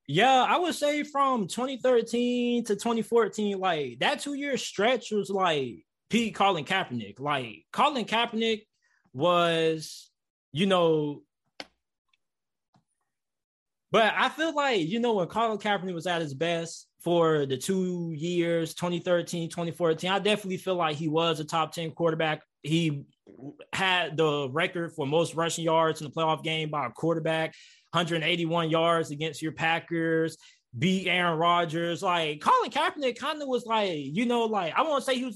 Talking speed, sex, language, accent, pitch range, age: 150 wpm, male, English, American, 160-220 Hz, 20-39